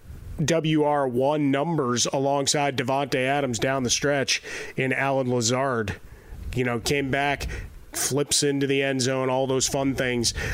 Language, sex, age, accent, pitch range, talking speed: English, male, 30-49, American, 130-155 Hz, 135 wpm